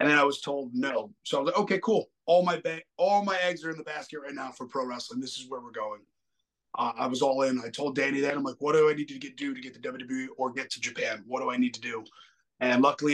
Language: English